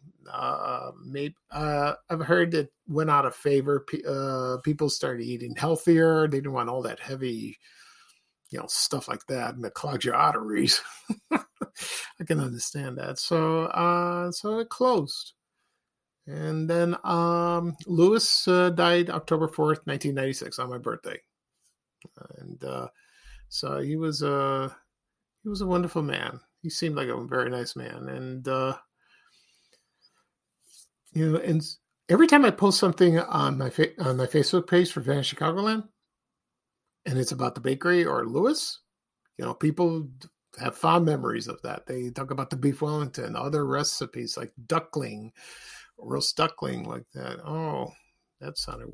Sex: male